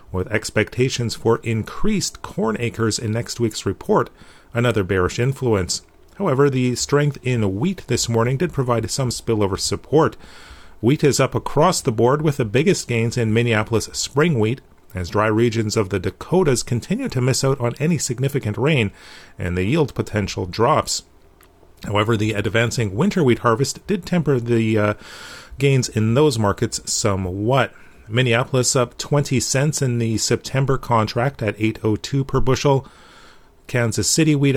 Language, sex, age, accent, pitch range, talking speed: English, male, 40-59, American, 105-140 Hz, 155 wpm